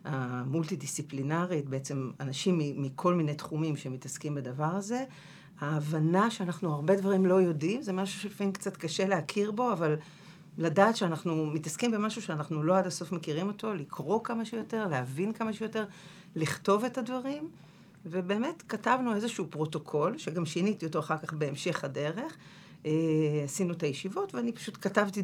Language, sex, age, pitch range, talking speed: English, female, 50-69, 150-185 Hz, 120 wpm